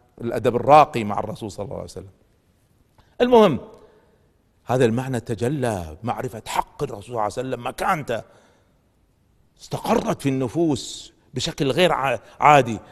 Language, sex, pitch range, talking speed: Arabic, male, 110-165 Hz, 120 wpm